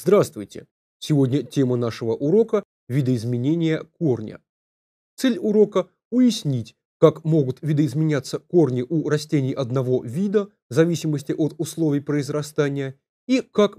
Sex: male